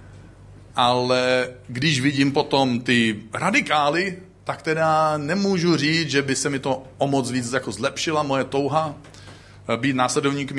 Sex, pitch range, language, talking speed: male, 115-160 Hz, Czech, 135 wpm